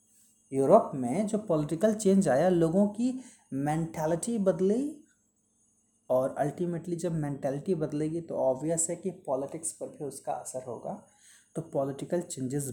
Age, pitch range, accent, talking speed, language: 30-49, 155-225 Hz, native, 130 wpm, Hindi